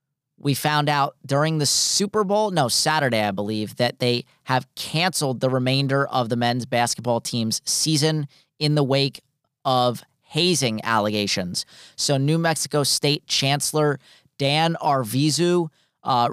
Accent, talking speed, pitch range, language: American, 135 wpm, 125-150 Hz, English